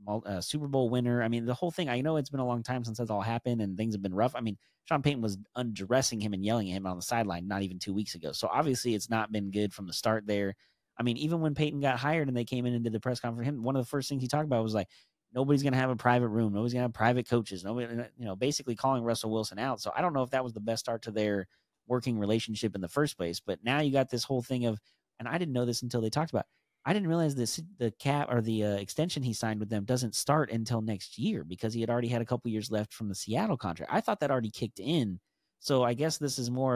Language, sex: English, male